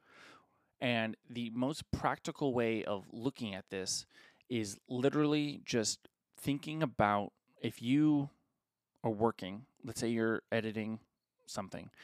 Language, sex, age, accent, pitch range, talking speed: English, male, 20-39, American, 110-135 Hz, 115 wpm